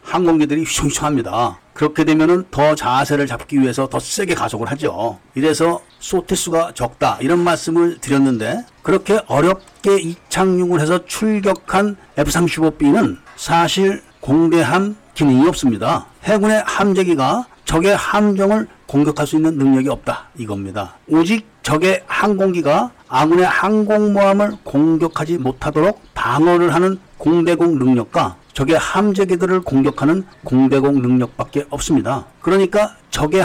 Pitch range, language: 145-190 Hz, Korean